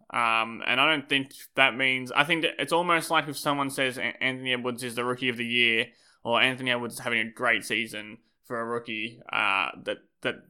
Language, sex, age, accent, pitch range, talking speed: English, male, 20-39, Australian, 115-135 Hz, 215 wpm